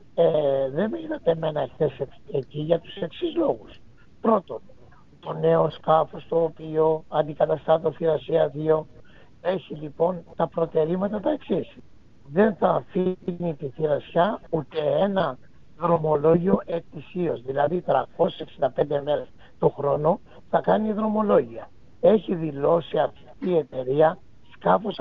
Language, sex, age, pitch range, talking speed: Greek, male, 60-79, 155-185 Hz, 115 wpm